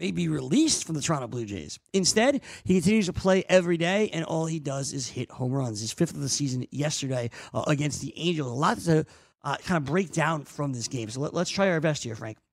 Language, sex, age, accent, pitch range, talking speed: English, male, 40-59, American, 155-210 Hz, 250 wpm